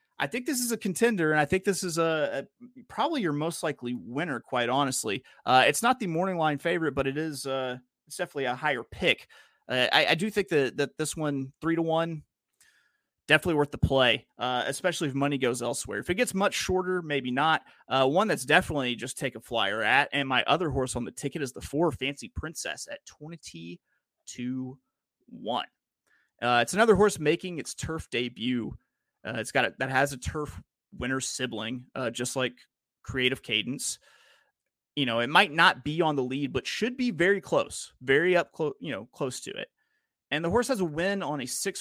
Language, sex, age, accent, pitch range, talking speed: English, male, 30-49, American, 125-165 Hz, 205 wpm